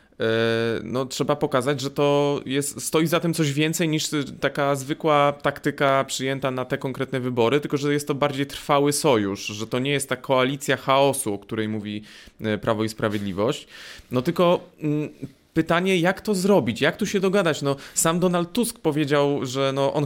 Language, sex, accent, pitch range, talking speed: Polish, male, native, 115-145 Hz, 175 wpm